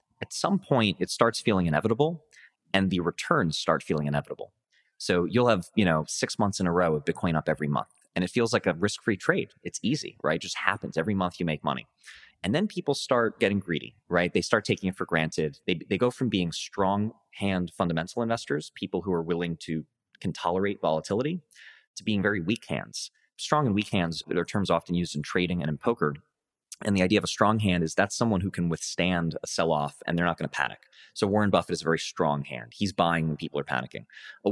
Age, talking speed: 30-49, 225 wpm